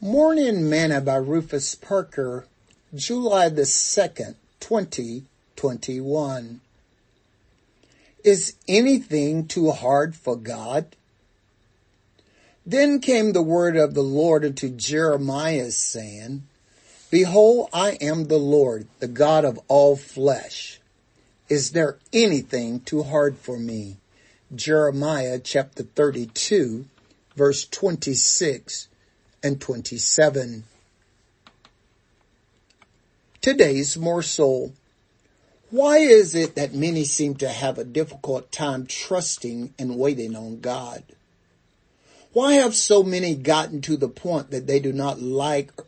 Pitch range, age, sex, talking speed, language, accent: 125-160 Hz, 60-79, male, 110 wpm, English, American